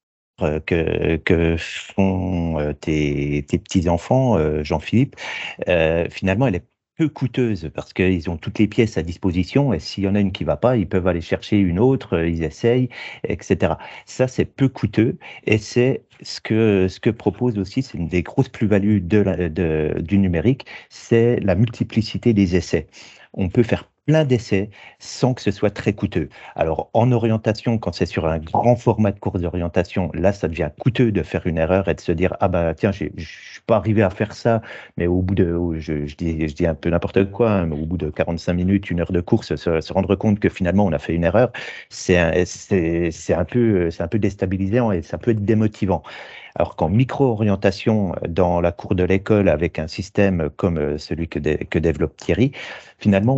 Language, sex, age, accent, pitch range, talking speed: French, male, 50-69, French, 85-115 Hz, 190 wpm